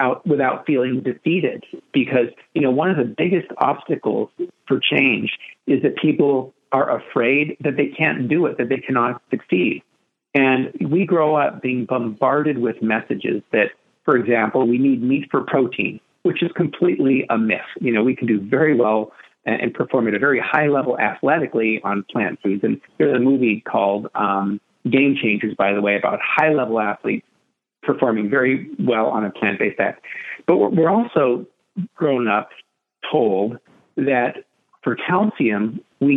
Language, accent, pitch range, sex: English, American, 115-155 Hz, male